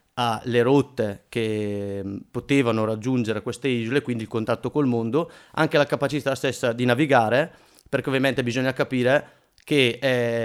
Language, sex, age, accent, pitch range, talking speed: Italian, male, 30-49, native, 115-135 Hz, 145 wpm